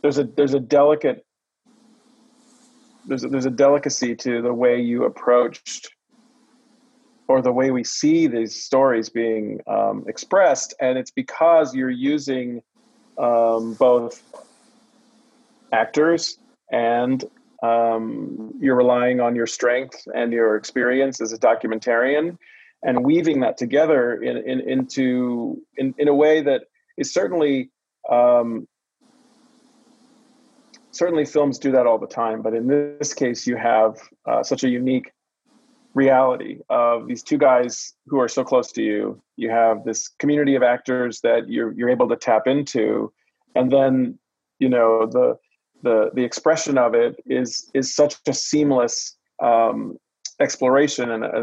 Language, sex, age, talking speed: English, male, 40-59, 140 wpm